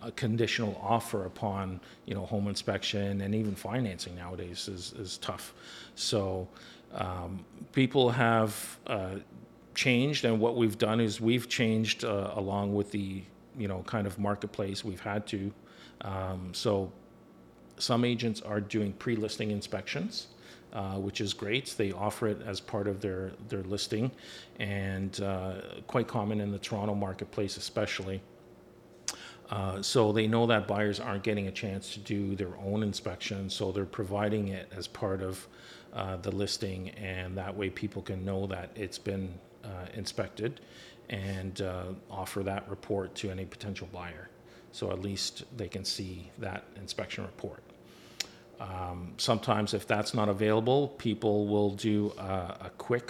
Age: 40-59